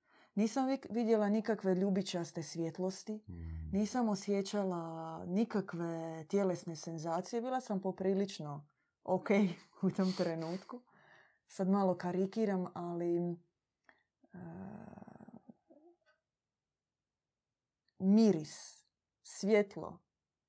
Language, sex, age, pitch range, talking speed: Croatian, female, 20-39, 170-205 Hz, 70 wpm